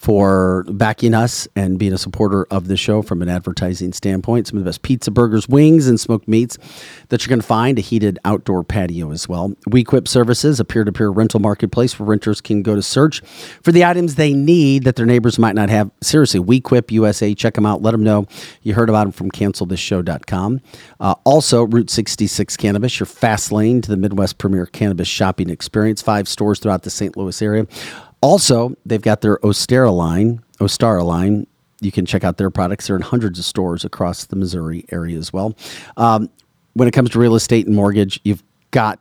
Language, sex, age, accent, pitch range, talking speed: English, male, 40-59, American, 95-115 Hz, 200 wpm